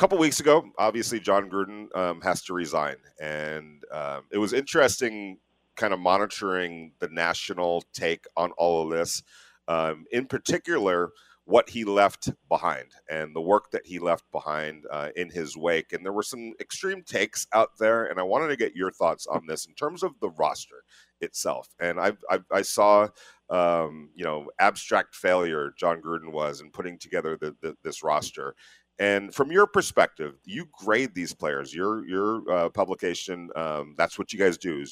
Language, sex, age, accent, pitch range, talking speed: English, male, 40-59, American, 80-105 Hz, 175 wpm